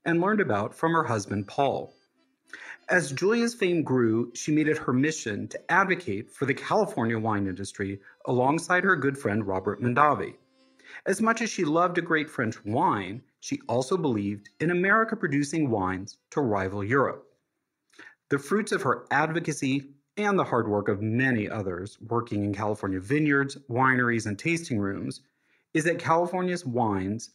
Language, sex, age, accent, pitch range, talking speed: English, male, 40-59, American, 110-170 Hz, 160 wpm